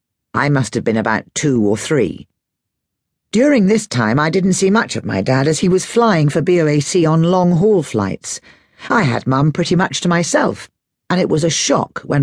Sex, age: female, 50-69